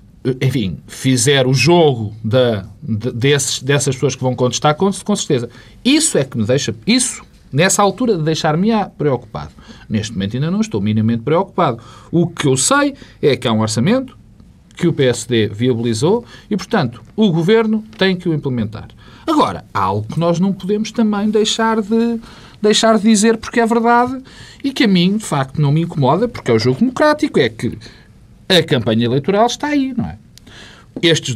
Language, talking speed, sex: Portuguese, 185 wpm, male